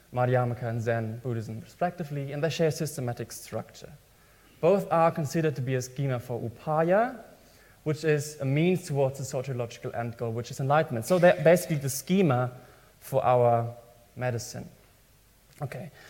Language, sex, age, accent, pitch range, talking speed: English, male, 20-39, German, 125-160 Hz, 155 wpm